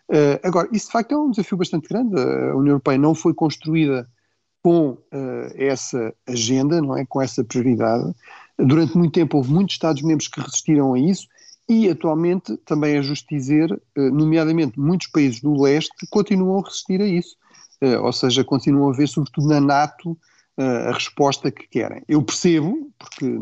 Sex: male